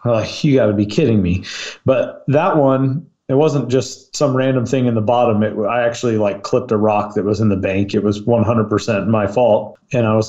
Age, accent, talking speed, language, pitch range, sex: 30-49, American, 225 wpm, English, 115-130 Hz, male